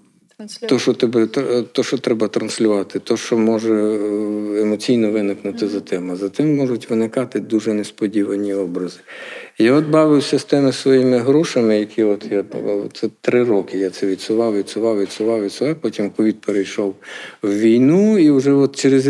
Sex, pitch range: male, 100-135 Hz